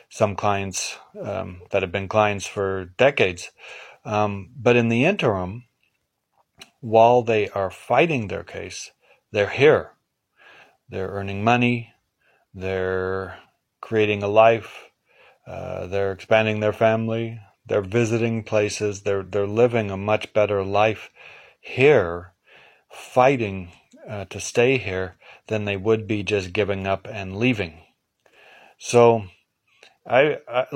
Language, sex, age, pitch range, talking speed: English, male, 40-59, 95-115 Hz, 120 wpm